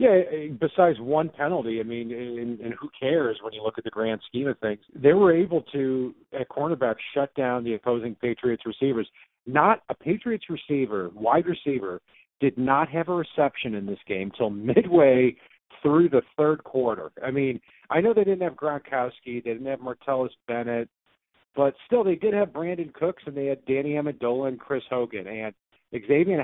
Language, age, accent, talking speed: English, 50-69, American, 185 wpm